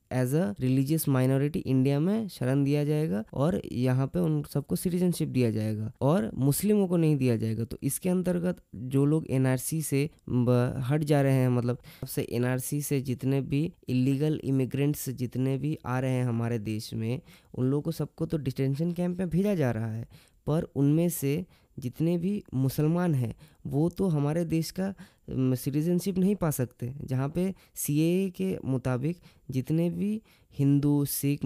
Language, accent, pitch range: Hindi, native, 130-170 Hz